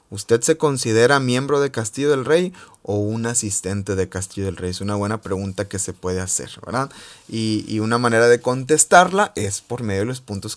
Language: Spanish